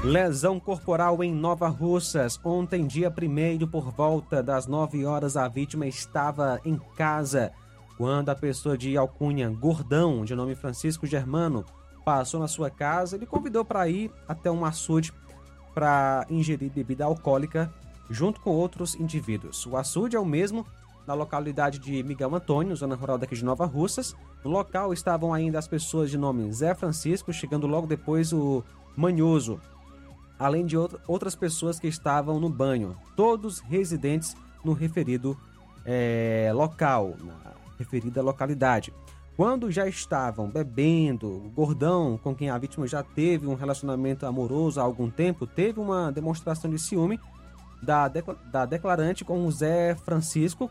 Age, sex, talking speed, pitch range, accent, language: 20-39, male, 150 wpm, 130-175 Hz, Brazilian, Portuguese